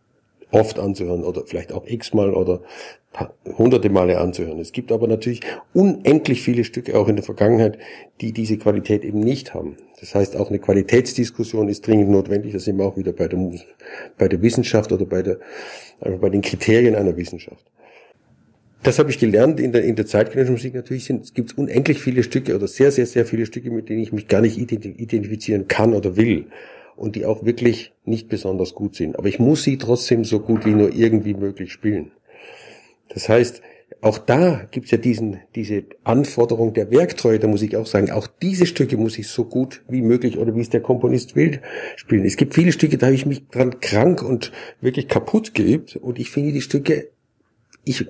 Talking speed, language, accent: 200 wpm, German, German